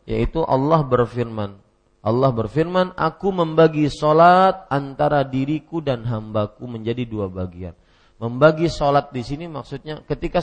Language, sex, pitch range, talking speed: Malay, male, 115-160 Hz, 120 wpm